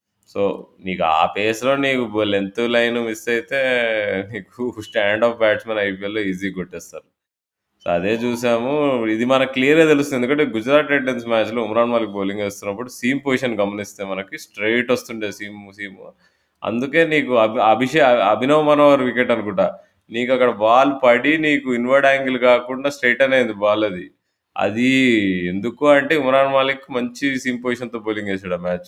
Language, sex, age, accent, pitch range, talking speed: Telugu, male, 20-39, native, 105-125 Hz, 145 wpm